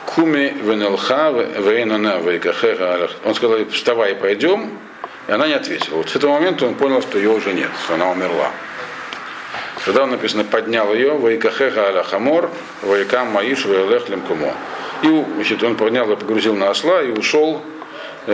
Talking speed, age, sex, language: 130 wpm, 50-69, male, Russian